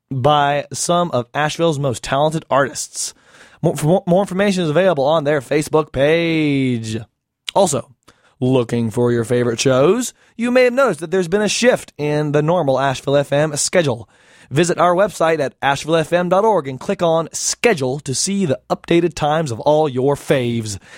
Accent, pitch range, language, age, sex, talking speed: American, 130-170 Hz, English, 20-39, male, 155 wpm